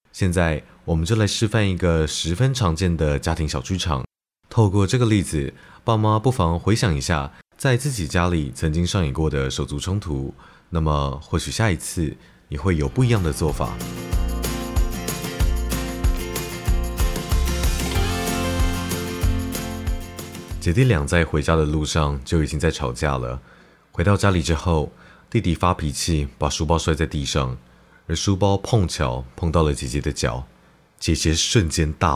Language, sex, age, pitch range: Chinese, male, 30-49, 75-90 Hz